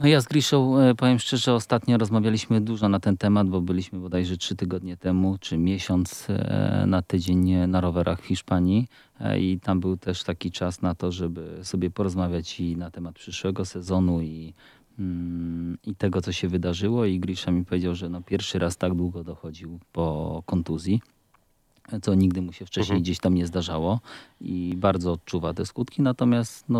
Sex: male